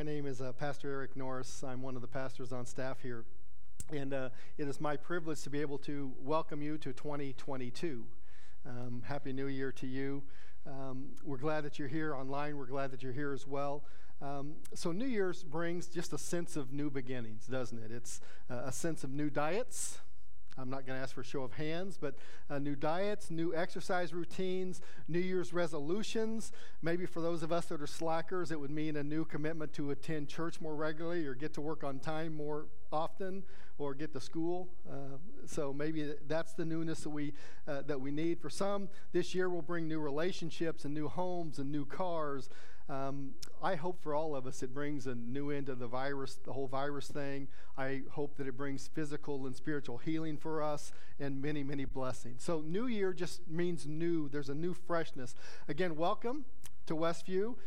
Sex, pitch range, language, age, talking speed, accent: male, 135-165 Hz, English, 50-69, 200 wpm, American